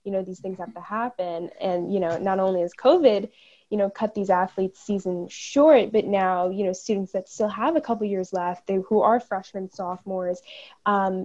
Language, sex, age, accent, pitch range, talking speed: English, female, 10-29, American, 185-215 Hz, 215 wpm